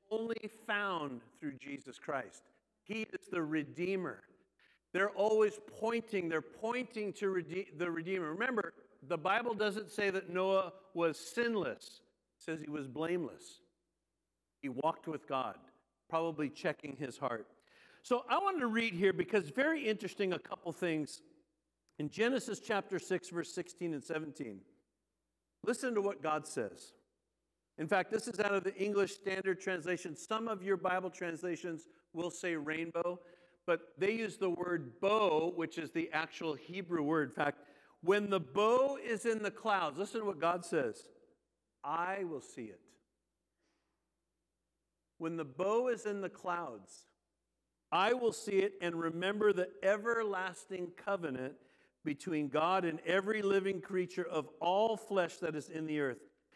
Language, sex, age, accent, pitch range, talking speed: English, male, 60-79, American, 160-205 Hz, 150 wpm